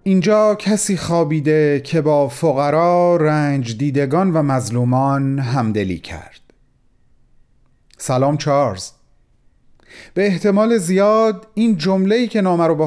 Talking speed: 95 wpm